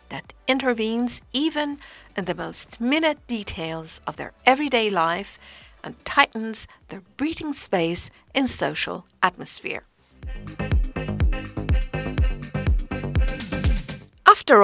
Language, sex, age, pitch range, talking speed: English, female, 50-69, 175-270 Hz, 85 wpm